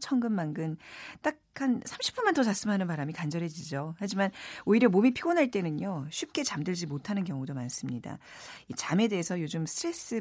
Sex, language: female, Korean